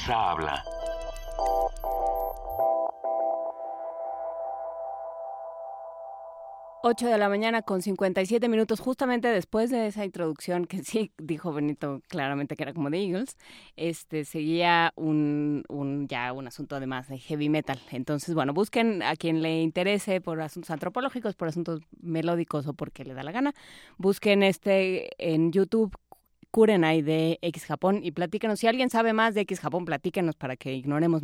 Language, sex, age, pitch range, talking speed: Spanish, female, 20-39, 150-215 Hz, 140 wpm